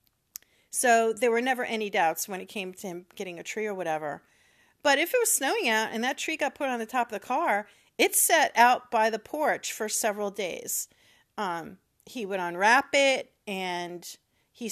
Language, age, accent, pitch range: English, 40-59, American, 210-260 Hz